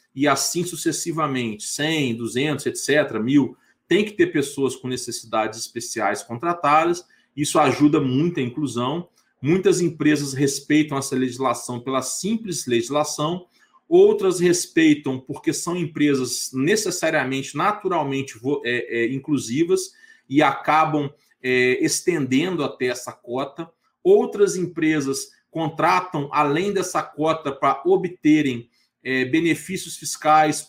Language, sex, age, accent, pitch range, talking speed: Portuguese, male, 40-59, Brazilian, 135-180 Hz, 100 wpm